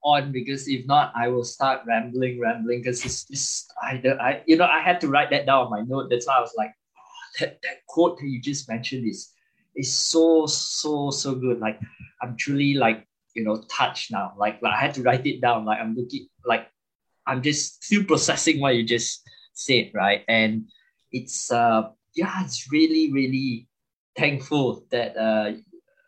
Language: English